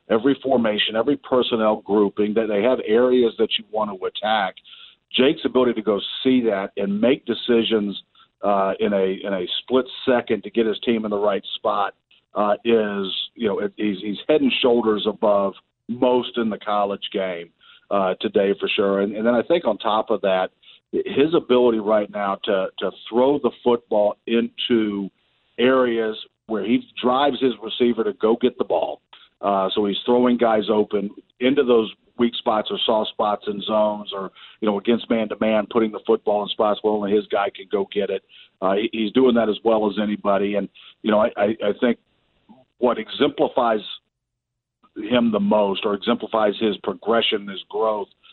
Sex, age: male, 50-69